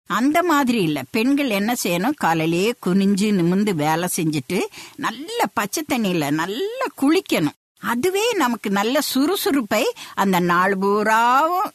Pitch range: 180-275 Hz